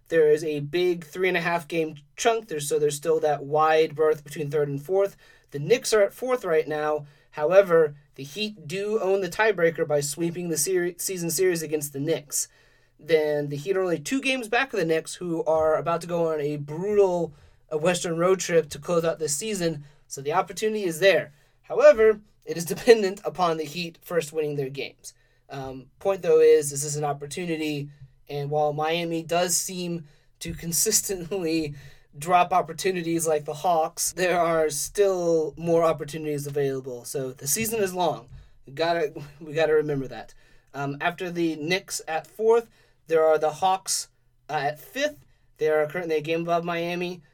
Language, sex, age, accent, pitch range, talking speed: English, male, 30-49, American, 145-180 Hz, 175 wpm